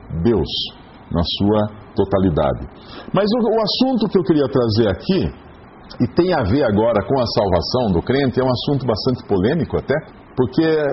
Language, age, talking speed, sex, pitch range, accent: English, 50-69, 165 wpm, male, 105-155 Hz, Brazilian